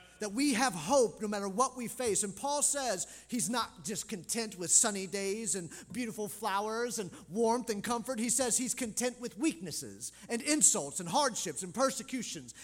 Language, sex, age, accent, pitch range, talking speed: English, male, 40-59, American, 180-250 Hz, 180 wpm